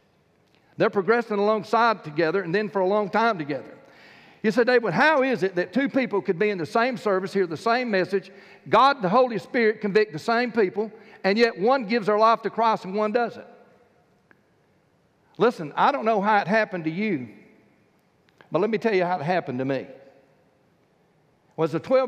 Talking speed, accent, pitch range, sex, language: 195 wpm, American, 190-225 Hz, male, English